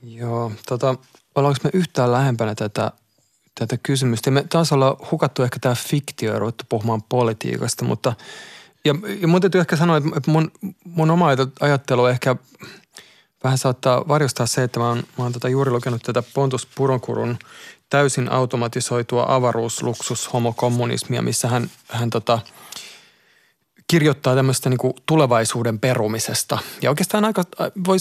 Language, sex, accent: Finnish, male, native